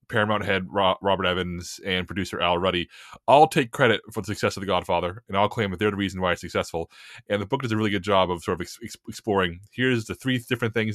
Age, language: 30-49, English